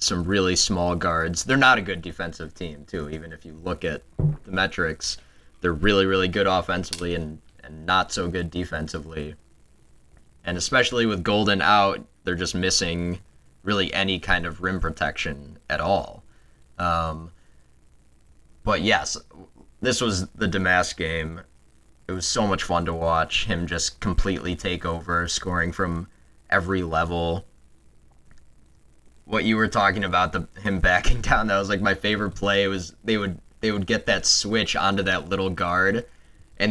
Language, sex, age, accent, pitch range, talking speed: English, male, 20-39, American, 80-100 Hz, 160 wpm